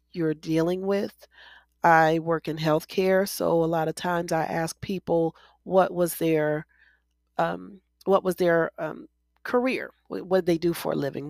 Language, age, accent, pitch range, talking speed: English, 40-59, American, 155-180 Hz, 165 wpm